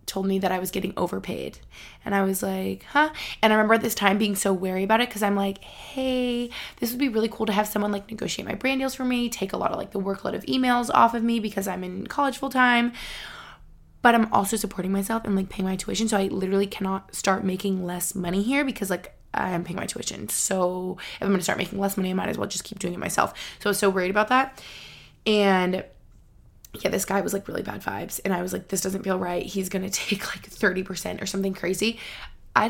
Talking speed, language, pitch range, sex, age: 250 wpm, English, 185-220 Hz, female, 20-39